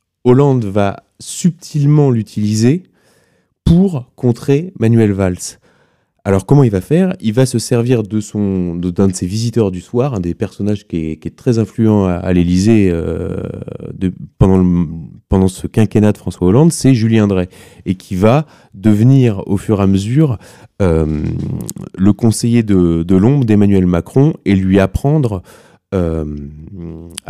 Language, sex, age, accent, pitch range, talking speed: French, male, 30-49, French, 90-120 Hz, 145 wpm